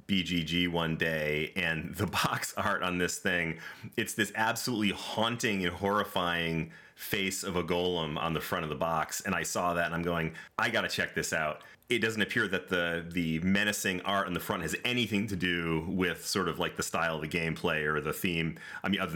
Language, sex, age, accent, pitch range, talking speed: English, male, 30-49, American, 85-100 Hz, 215 wpm